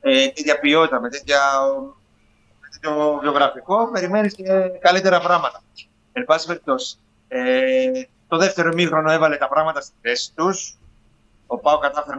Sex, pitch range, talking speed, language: male, 150-205 Hz, 125 wpm, Greek